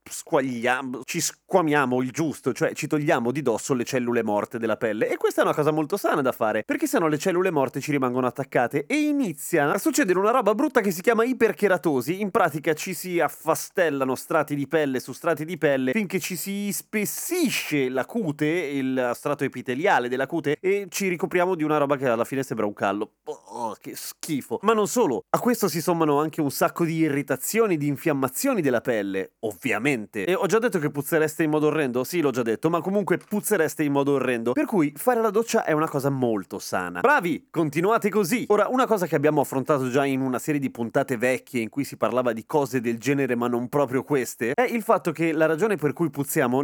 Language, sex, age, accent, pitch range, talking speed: Italian, male, 30-49, native, 130-185 Hz, 210 wpm